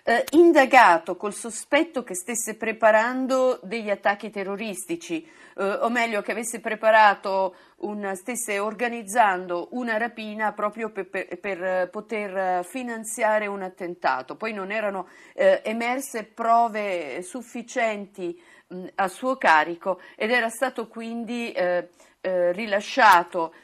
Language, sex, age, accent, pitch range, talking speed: Italian, female, 50-69, native, 185-230 Hz, 115 wpm